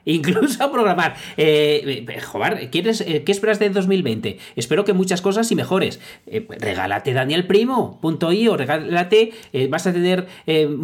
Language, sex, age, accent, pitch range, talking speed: Spanish, male, 40-59, Spanish, 145-210 Hz, 150 wpm